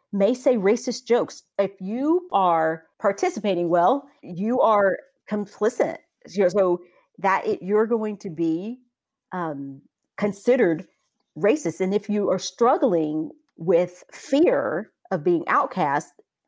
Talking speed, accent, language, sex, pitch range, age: 115 wpm, American, English, female, 180-250 Hz, 40-59